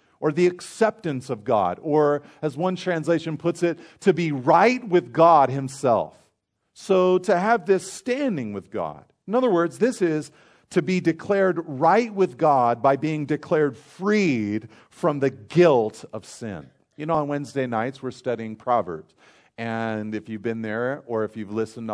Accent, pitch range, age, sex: American, 135-180 Hz, 40-59, male